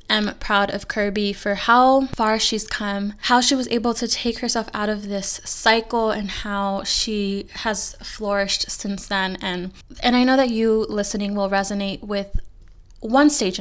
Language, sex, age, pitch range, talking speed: English, female, 10-29, 195-225 Hz, 170 wpm